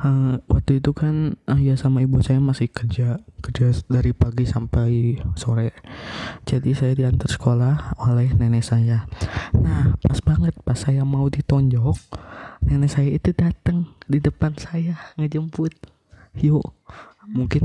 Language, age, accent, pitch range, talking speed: Indonesian, 20-39, native, 115-135 Hz, 140 wpm